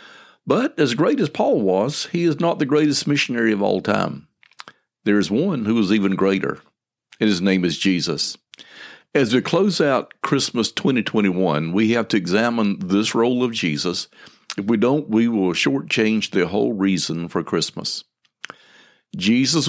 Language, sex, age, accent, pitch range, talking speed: English, male, 50-69, American, 100-130 Hz, 160 wpm